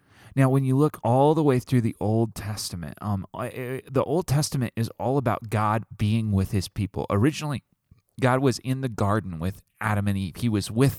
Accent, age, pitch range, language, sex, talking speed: American, 30-49, 105-125 Hz, English, male, 195 wpm